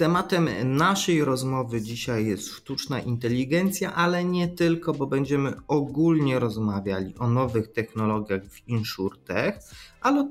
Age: 30-49